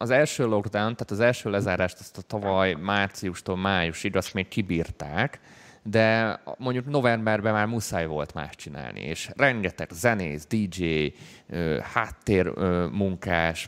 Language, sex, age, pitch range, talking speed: Hungarian, male, 30-49, 90-115 Hz, 125 wpm